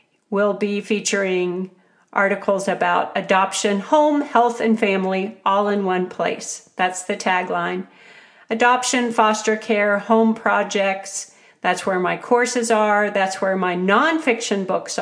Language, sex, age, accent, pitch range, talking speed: English, female, 50-69, American, 195-245 Hz, 130 wpm